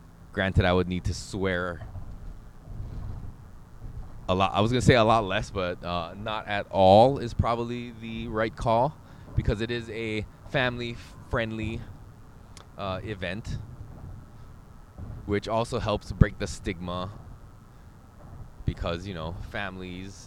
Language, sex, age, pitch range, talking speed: English, male, 20-39, 90-115 Hz, 125 wpm